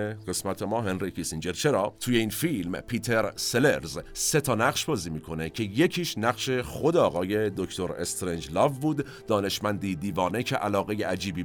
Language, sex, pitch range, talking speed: Persian, male, 90-130 Hz, 145 wpm